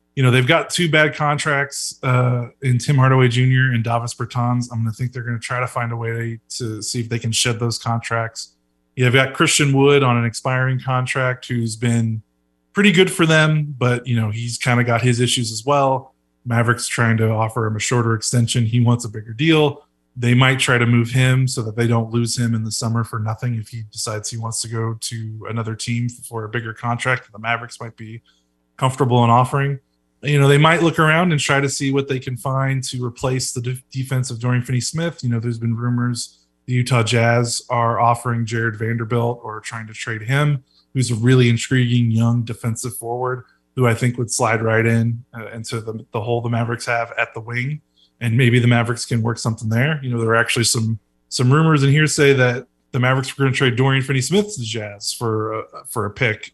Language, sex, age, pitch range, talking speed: English, male, 20-39, 115-130 Hz, 225 wpm